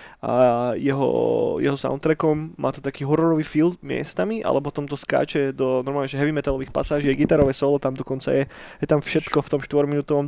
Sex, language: male, Slovak